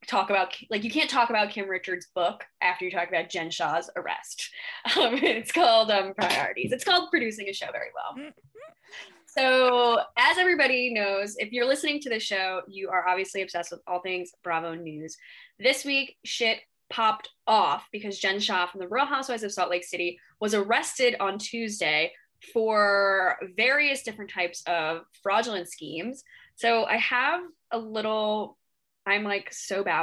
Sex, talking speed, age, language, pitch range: female, 170 wpm, 10-29, English, 185-245 Hz